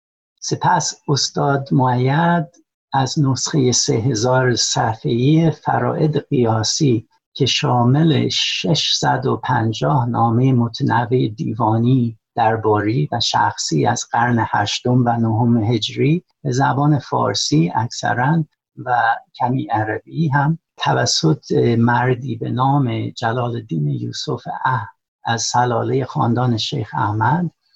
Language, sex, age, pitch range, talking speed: Persian, male, 60-79, 115-150 Hz, 100 wpm